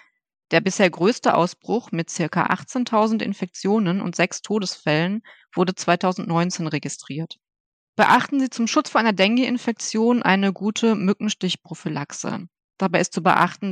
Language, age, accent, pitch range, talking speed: German, 20-39, German, 170-215 Hz, 120 wpm